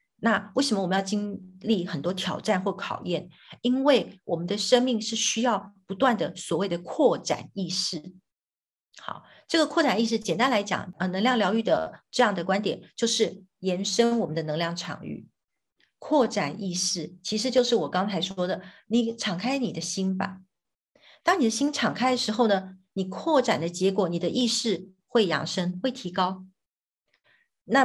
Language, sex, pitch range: Chinese, female, 185-240 Hz